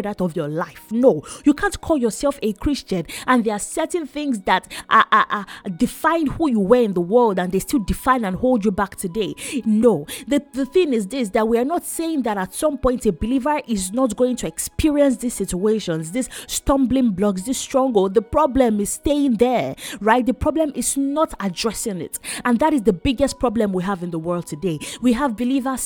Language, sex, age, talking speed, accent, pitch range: English, female, 30-49, 205 wpm, Nigerian, 205-270 Hz